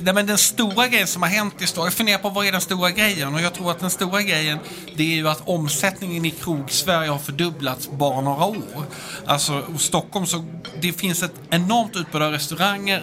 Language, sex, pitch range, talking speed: Swedish, male, 135-175 Hz, 220 wpm